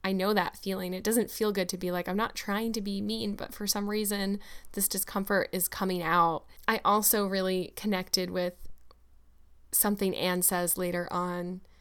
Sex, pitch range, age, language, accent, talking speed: female, 175-195 Hz, 10-29, English, American, 185 wpm